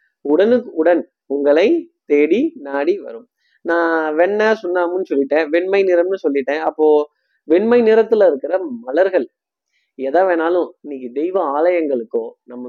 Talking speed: 115 wpm